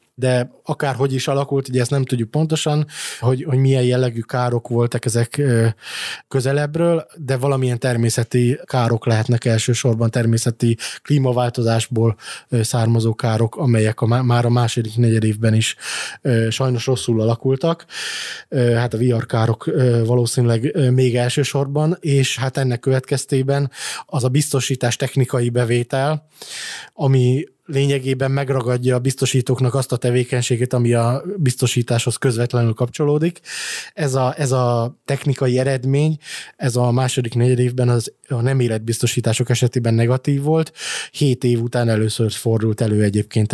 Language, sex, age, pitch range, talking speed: Hungarian, male, 20-39, 115-135 Hz, 125 wpm